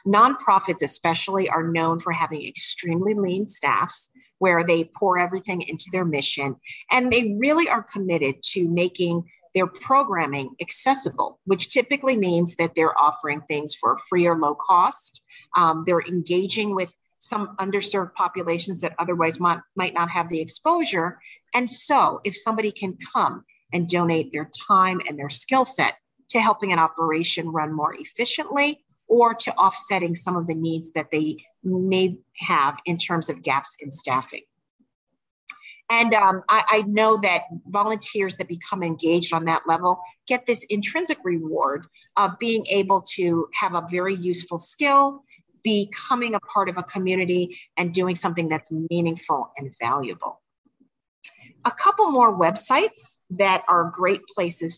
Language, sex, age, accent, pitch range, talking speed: English, female, 40-59, American, 165-210 Hz, 150 wpm